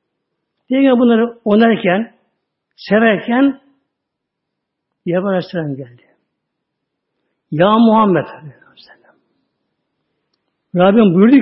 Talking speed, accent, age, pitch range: 65 wpm, native, 60-79, 165-230 Hz